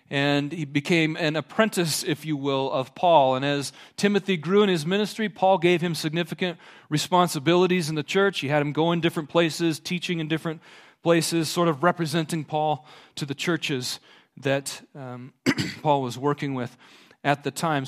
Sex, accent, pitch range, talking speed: male, American, 145-180 Hz, 175 wpm